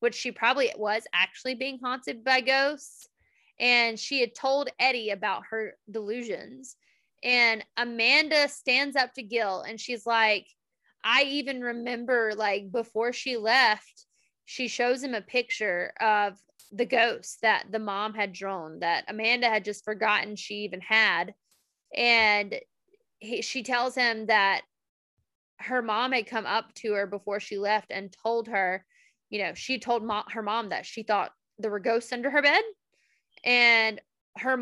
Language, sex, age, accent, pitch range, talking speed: English, female, 20-39, American, 215-255 Hz, 155 wpm